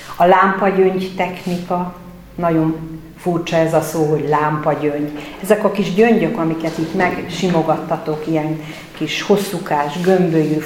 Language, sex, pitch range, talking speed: Hungarian, female, 155-190 Hz, 120 wpm